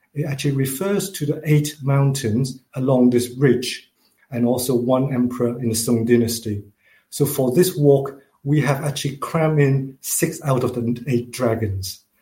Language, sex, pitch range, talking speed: English, male, 125-150 Hz, 160 wpm